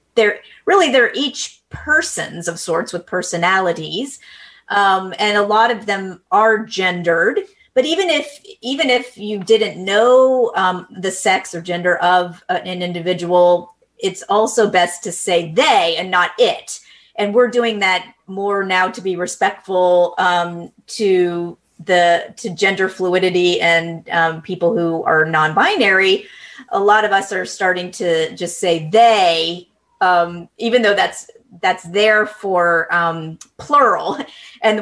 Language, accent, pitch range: English, American, 180-225 Hz